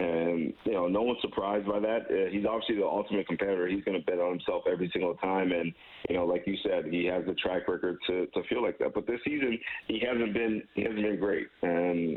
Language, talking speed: English, 245 wpm